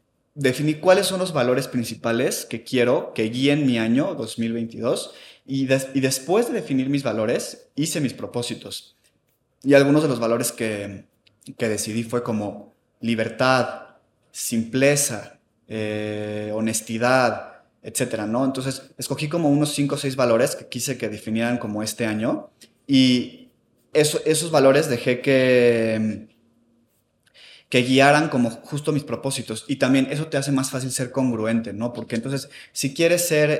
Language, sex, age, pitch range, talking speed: Spanish, male, 20-39, 115-135 Hz, 145 wpm